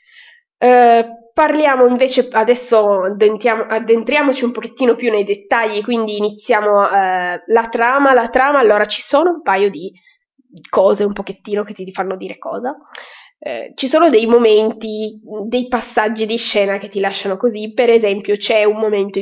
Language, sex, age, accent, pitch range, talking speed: Italian, female, 20-39, native, 200-250 Hz, 145 wpm